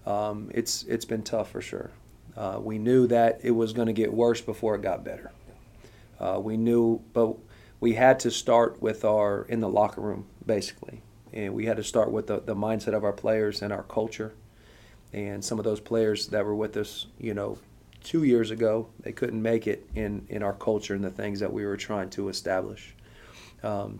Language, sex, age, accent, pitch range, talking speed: English, male, 40-59, American, 105-115 Hz, 215 wpm